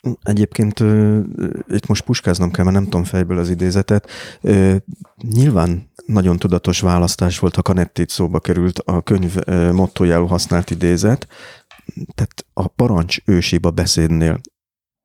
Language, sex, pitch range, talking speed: Hungarian, male, 90-105 Hz, 130 wpm